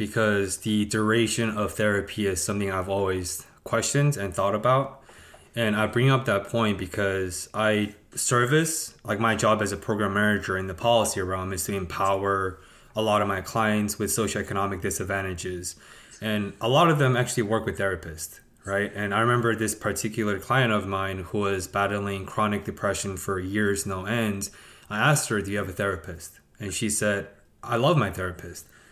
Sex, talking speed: male, 180 wpm